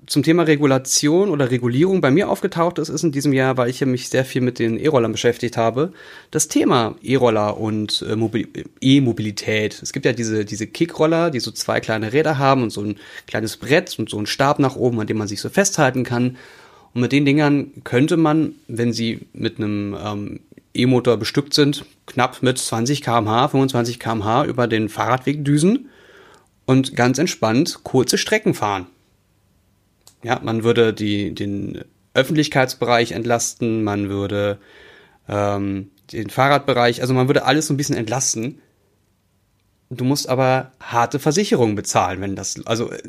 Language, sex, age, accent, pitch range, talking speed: German, male, 30-49, German, 110-150 Hz, 165 wpm